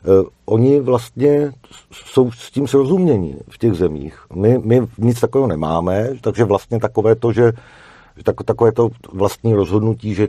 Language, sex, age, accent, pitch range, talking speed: Czech, male, 50-69, native, 95-115 Hz, 145 wpm